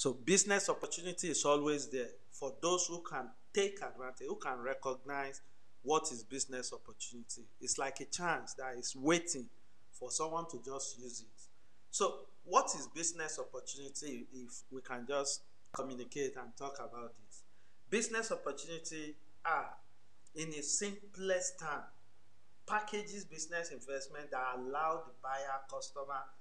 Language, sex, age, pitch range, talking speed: English, male, 50-69, 120-165 Hz, 140 wpm